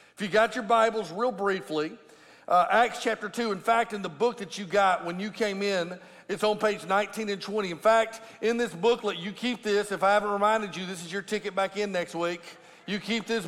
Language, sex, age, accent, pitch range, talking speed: English, male, 50-69, American, 205-250 Hz, 235 wpm